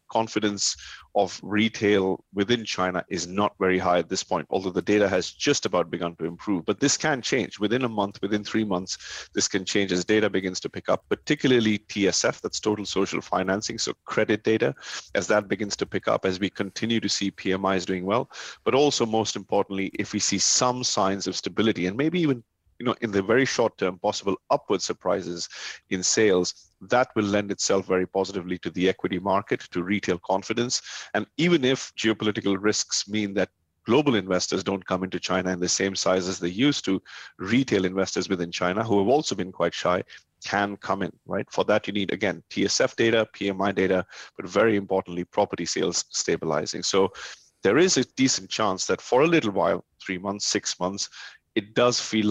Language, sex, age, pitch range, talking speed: English, male, 30-49, 95-110 Hz, 195 wpm